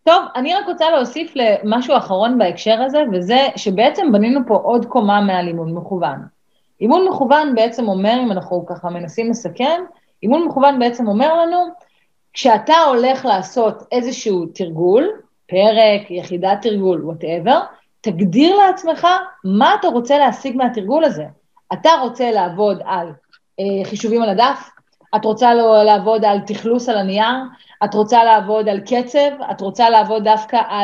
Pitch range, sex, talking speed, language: 200-270 Hz, female, 140 wpm, English